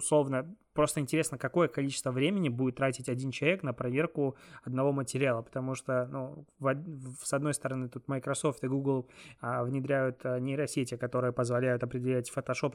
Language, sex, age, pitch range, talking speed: Russian, male, 20-39, 125-145 Hz, 160 wpm